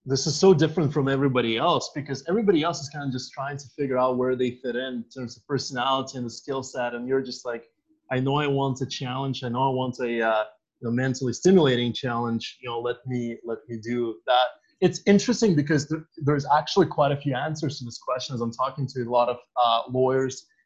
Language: English